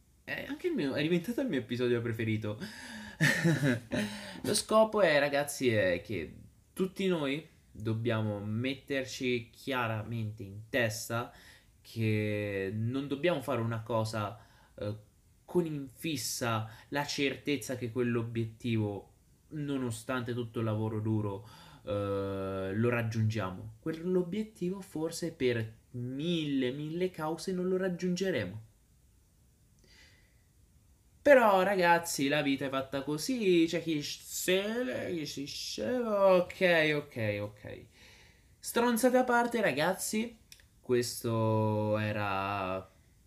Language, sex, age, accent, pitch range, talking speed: Italian, male, 20-39, native, 105-160 Hz, 100 wpm